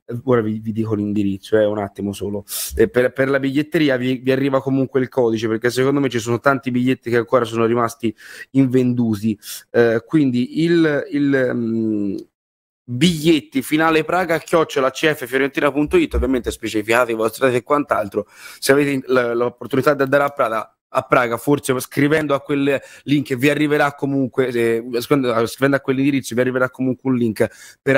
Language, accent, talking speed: Italian, native, 165 wpm